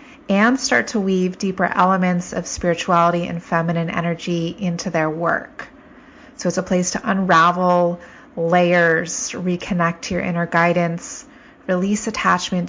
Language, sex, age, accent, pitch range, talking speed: English, female, 30-49, American, 170-195 Hz, 130 wpm